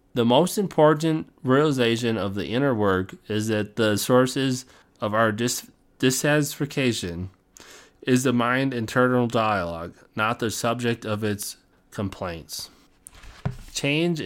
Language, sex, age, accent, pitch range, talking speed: English, male, 30-49, American, 105-135 Hz, 120 wpm